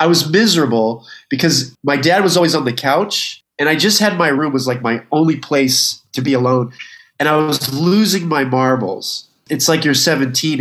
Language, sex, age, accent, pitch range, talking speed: English, male, 30-49, American, 145-195 Hz, 200 wpm